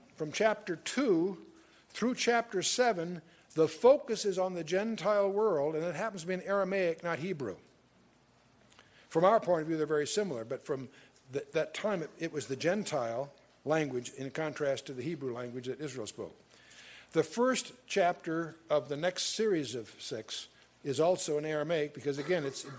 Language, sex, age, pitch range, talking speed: English, male, 60-79, 145-195 Hz, 170 wpm